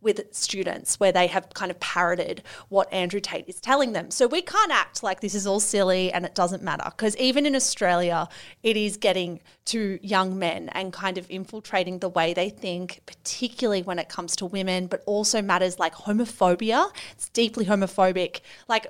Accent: Australian